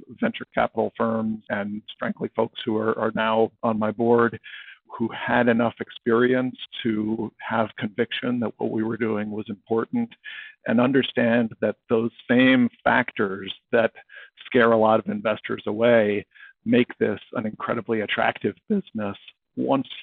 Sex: male